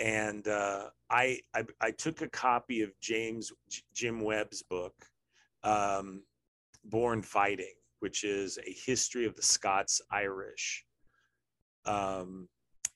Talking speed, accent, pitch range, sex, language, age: 115 wpm, American, 90-105 Hz, male, English, 30-49